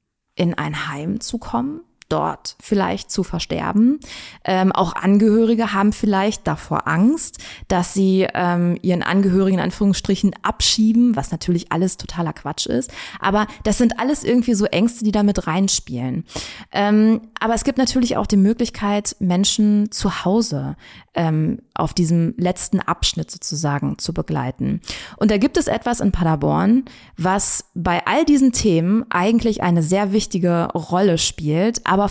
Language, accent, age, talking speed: German, German, 20-39, 145 wpm